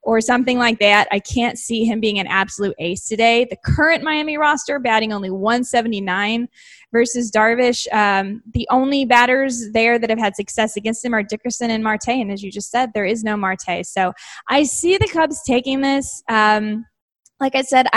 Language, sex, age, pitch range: English, female, 20-39, 220-290 Hz